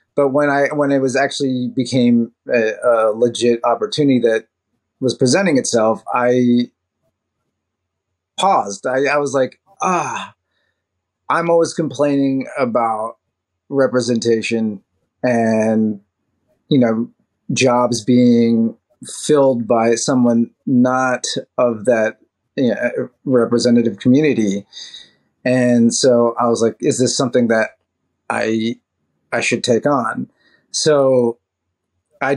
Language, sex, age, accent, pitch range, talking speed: English, male, 30-49, American, 115-140 Hz, 110 wpm